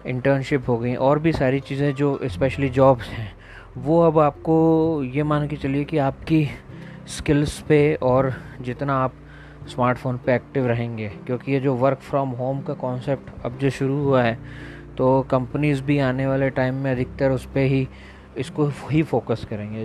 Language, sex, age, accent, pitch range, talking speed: Hindi, male, 20-39, native, 125-140 Hz, 170 wpm